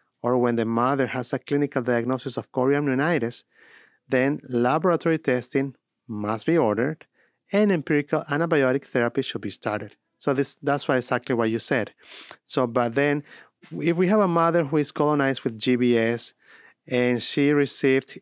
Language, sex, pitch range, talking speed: English, male, 120-150 Hz, 155 wpm